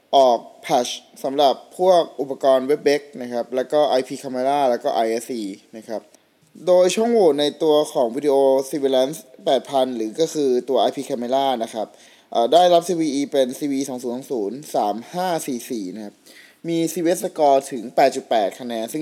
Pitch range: 130-165 Hz